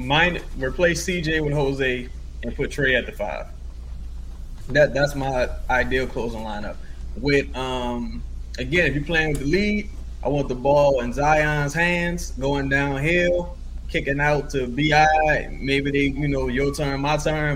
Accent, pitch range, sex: American, 120-150 Hz, male